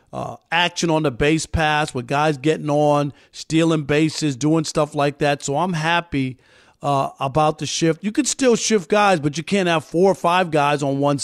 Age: 40-59